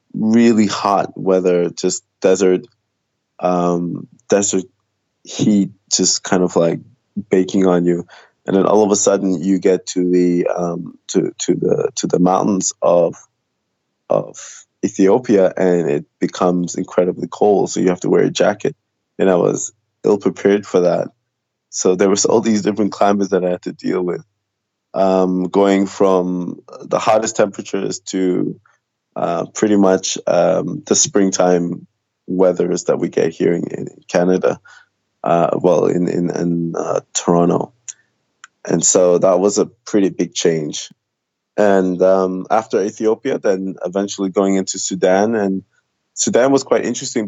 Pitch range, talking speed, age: 90-100 Hz, 150 wpm, 20-39